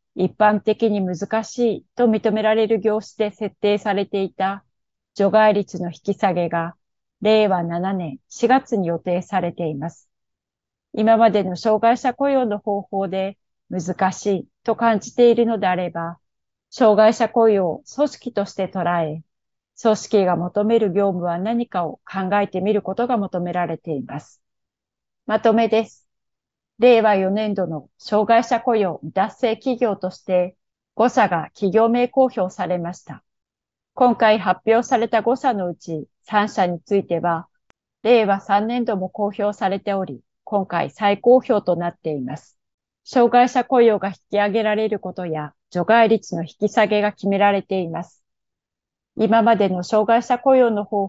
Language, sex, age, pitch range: Japanese, female, 30-49, 180-225 Hz